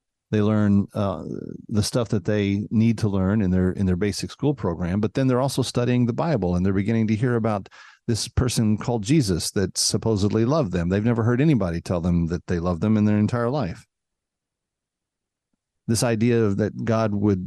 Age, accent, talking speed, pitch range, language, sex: 40-59, American, 200 wpm, 95-120 Hz, English, male